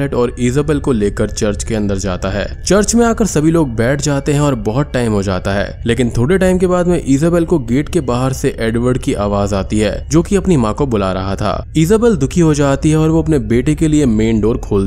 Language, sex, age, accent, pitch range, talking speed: Hindi, male, 20-39, native, 105-145 Hz, 200 wpm